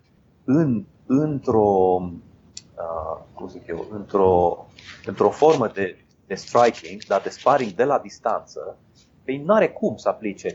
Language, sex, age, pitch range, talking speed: Romanian, male, 30-49, 100-155 Hz, 130 wpm